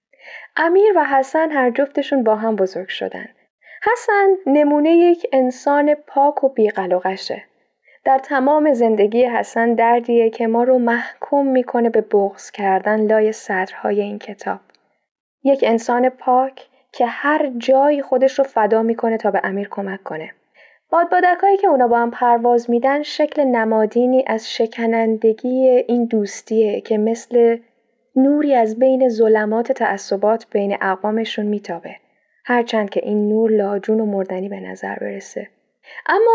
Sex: female